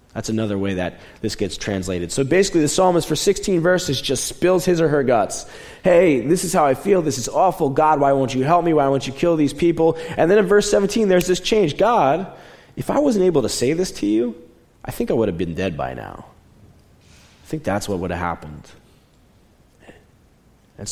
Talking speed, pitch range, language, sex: 220 wpm, 90-130 Hz, English, male